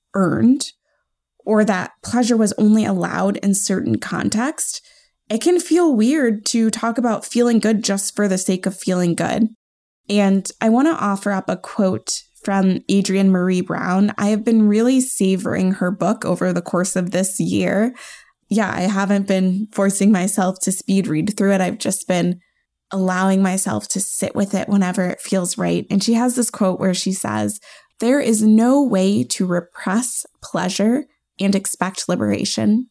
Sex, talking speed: female, 170 wpm